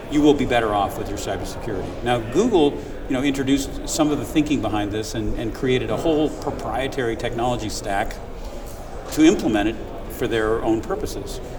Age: 40-59